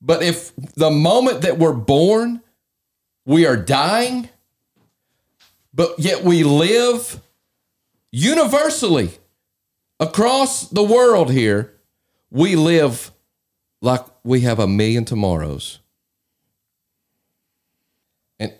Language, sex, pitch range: English, male, 125-180 Hz